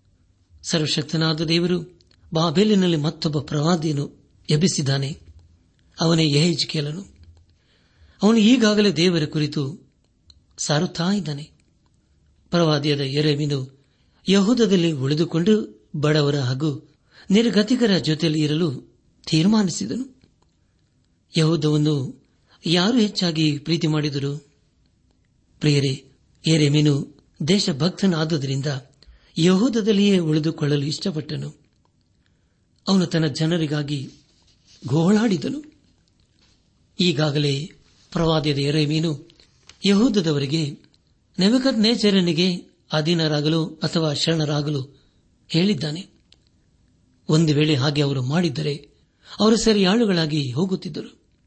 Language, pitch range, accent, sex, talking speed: Kannada, 145-180 Hz, native, male, 70 wpm